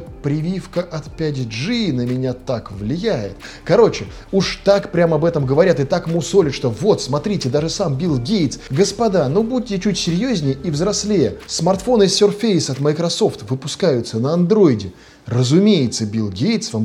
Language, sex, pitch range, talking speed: Russian, male, 130-185 Hz, 155 wpm